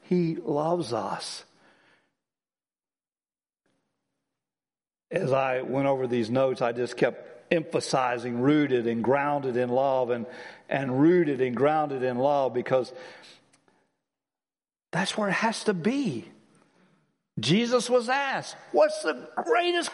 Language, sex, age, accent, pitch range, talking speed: English, male, 60-79, American, 145-220 Hz, 115 wpm